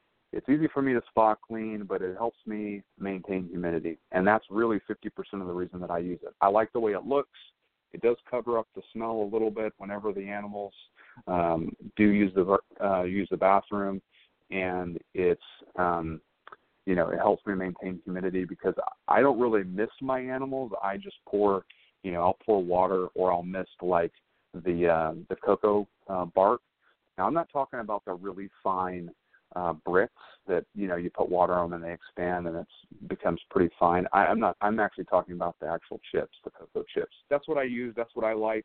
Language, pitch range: English, 90-115 Hz